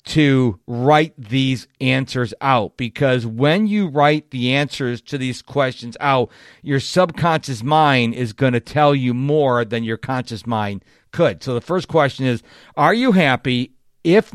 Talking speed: 155 wpm